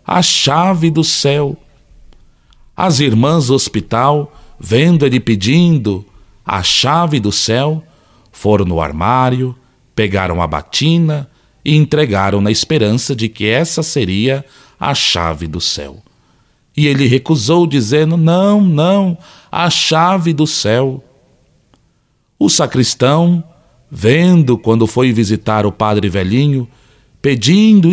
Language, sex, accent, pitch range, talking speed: Portuguese, male, Brazilian, 110-160 Hz, 115 wpm